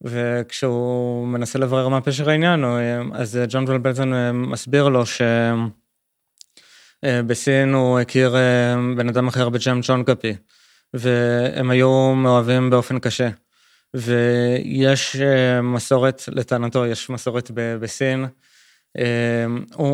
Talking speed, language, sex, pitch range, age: 100 wpm, Hebrew, male, 120-130 Hz, 20-39